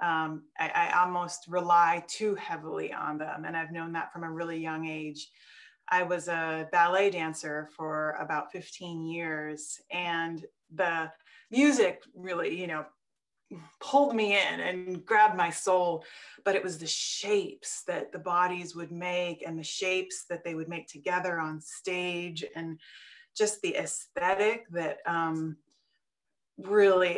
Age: 30-49